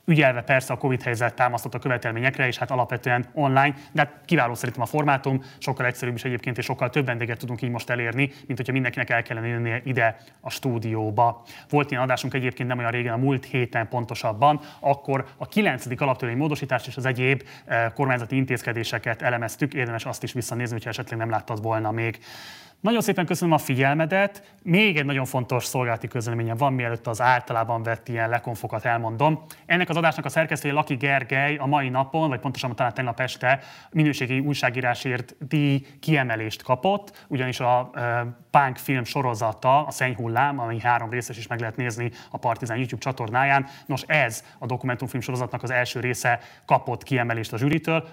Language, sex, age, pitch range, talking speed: Hungarian, male, 30-49, 120-140 Hz, 175 wpm